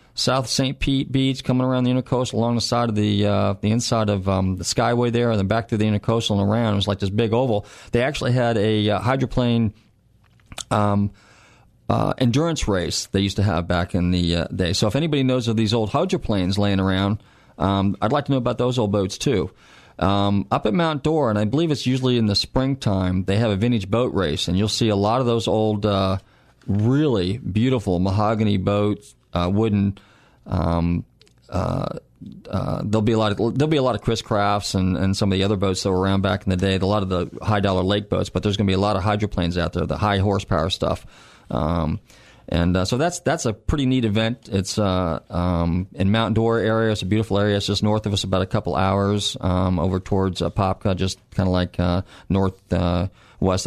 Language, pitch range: English, 95-115 Hz